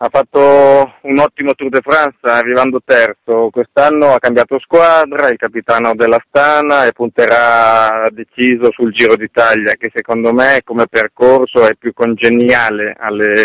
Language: Italian